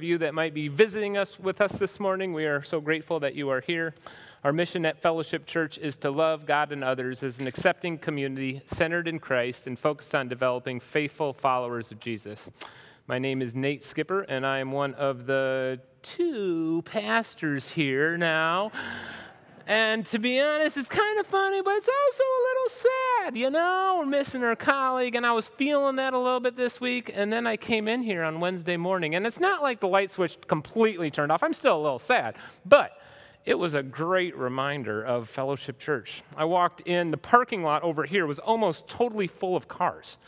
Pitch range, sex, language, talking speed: 150-230 Hz, male, English, 205 wpm